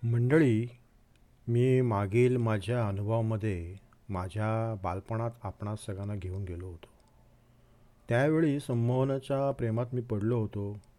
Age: 50-69